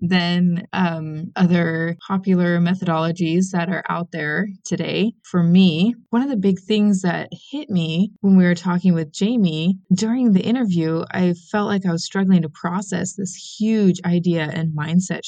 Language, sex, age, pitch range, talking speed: English, female, 20-39, 175-215 Hz, 165 wpm